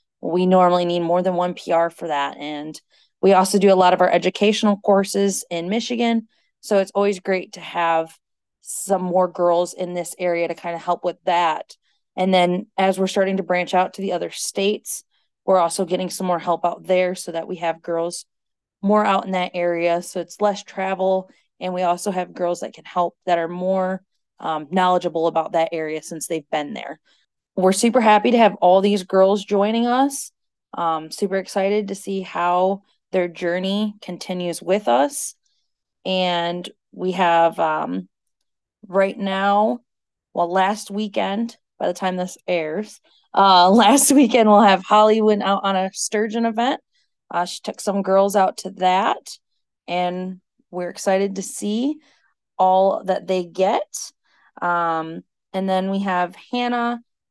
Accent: American